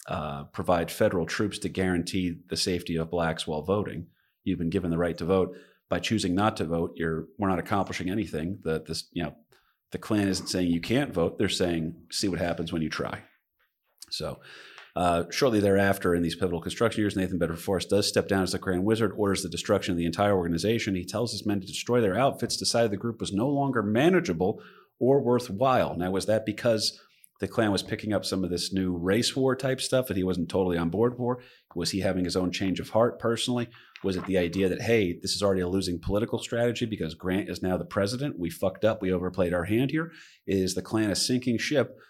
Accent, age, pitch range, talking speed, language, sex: American, 30-49, 90-110 Hz, 225 wpm, English, male